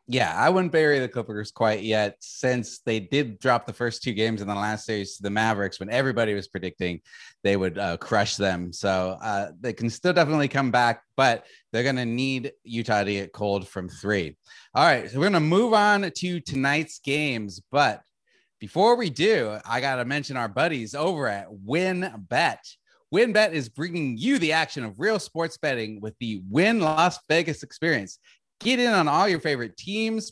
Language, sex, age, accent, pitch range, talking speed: English, male, 30-49, American, 110-160 Hz, 200 wpm